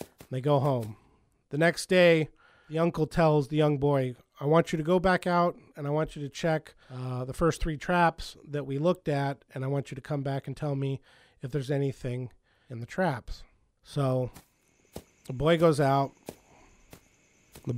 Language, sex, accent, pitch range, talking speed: English, male, American, 125-150 Hz, 190 wpm